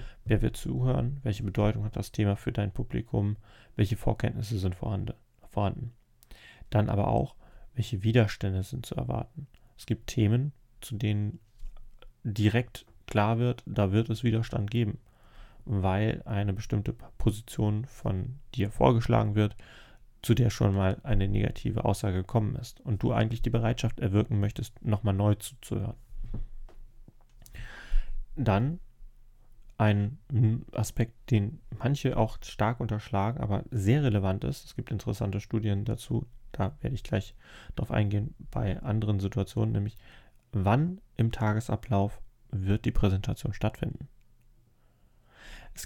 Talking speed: 130 wpm